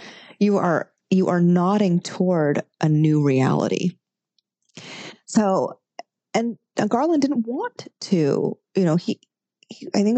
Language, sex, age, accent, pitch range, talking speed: English, female, 30-49, American, 160-220 Hz, 125 wpm